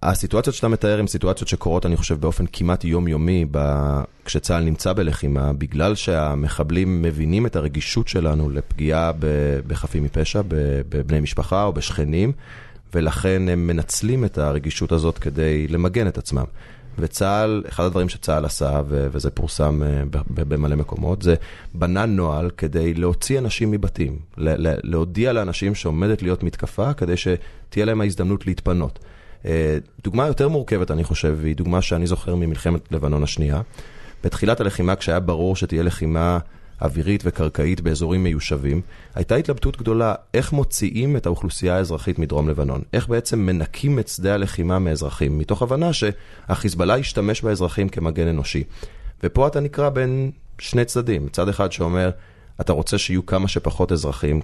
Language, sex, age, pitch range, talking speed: Hebrew, male, 30-49, 80-100 Hz, 140 wpm